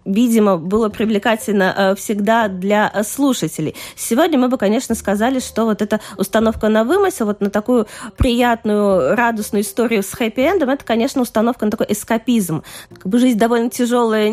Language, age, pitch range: Russian, 20-39, 210-255 Hz